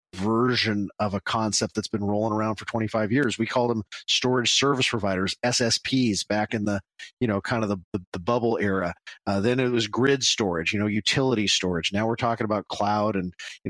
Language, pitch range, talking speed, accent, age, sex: English, 100-120 Hz, 200 wpm, American, 40-59, male